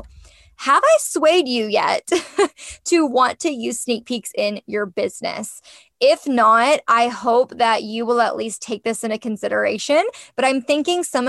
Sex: female